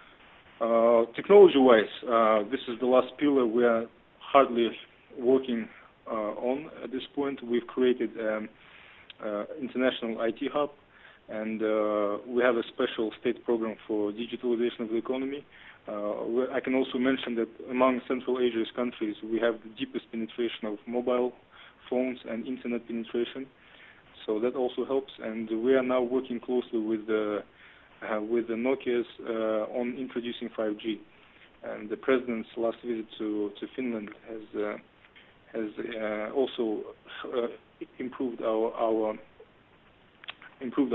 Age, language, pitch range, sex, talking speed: 20-39, English, 110-130 Hz, male, 140 wpm